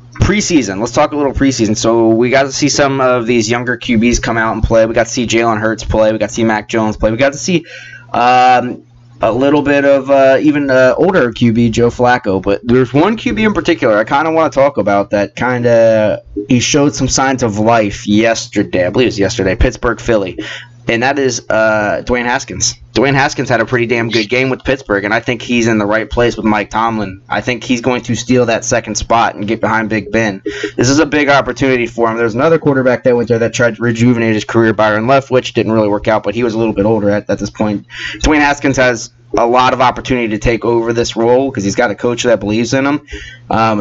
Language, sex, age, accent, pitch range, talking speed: English, male, 20-39, American, 110-130 Hz, 245 wpm